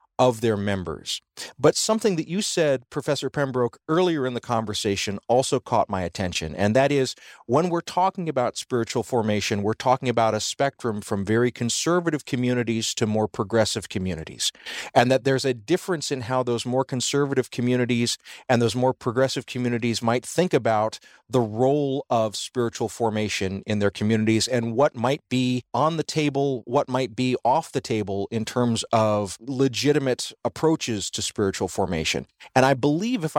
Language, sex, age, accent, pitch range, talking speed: English, male, 40-59, American, 115-145 Hz, 165 wpm